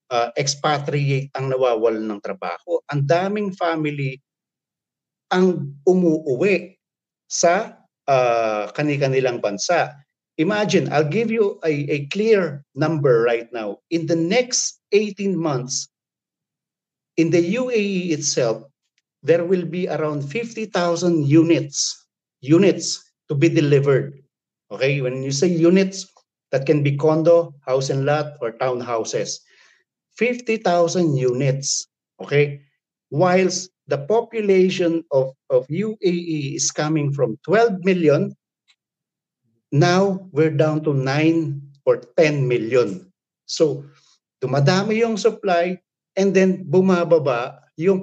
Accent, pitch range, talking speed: native, 140-185 Hz, 110 wpm